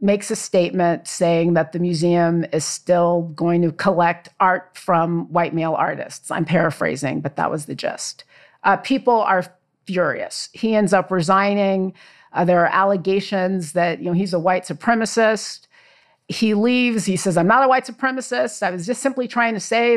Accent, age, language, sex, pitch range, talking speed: American, 40-59, English, female, 175-260 Hz, 175 wpm